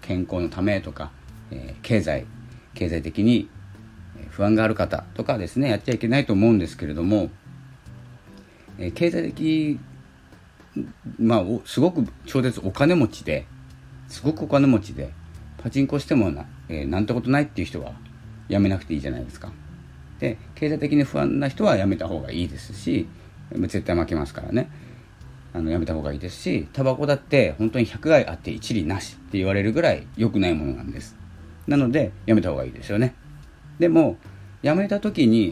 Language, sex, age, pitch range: Japanese, male, 40-59, 80-115 Hz